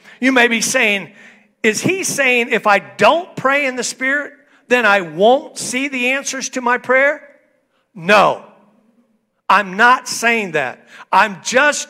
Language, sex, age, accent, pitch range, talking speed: English, male, 50-69, American, 205-275 Hz, 150 wpm